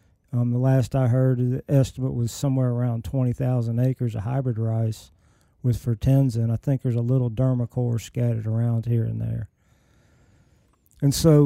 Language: English